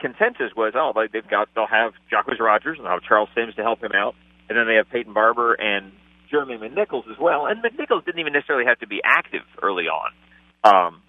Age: 40-59